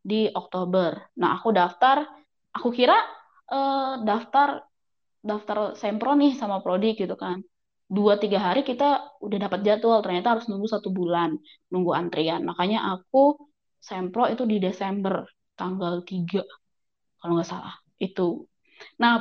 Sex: female